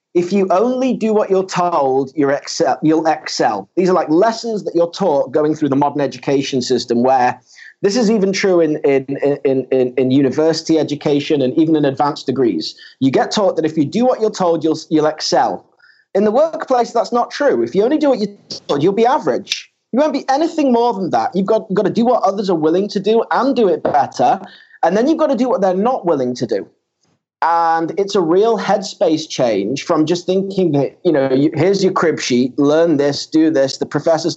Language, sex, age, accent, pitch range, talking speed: English, male, 30-49, British, 145-200 Hz, 210 wpm